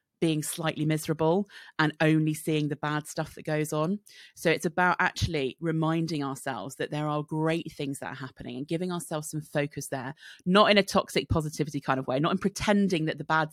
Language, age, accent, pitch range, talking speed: English, 30-49, British, 150-165 Hz, 205 wpm